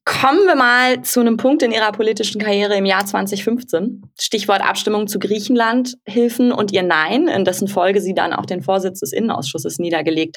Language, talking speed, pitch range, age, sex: German, 185 wpm, 175-225 Hz, 20-39, female